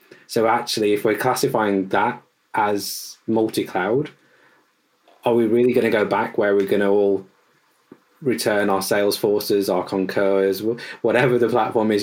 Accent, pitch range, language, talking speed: British, 100-120 Hz, English, 140 wpm